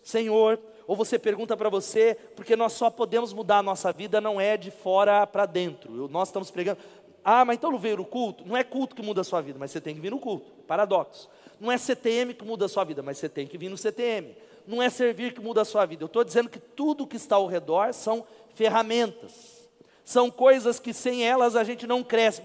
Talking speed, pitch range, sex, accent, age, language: 240 wpm, 215-255 Hz, male, Brazilian, 40-59, Portuguese